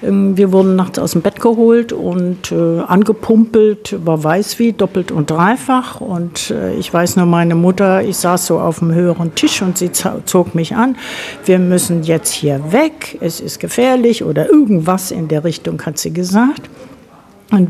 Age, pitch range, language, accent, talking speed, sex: 60-79, 170-220 Hz, German, German, 175 wpm, female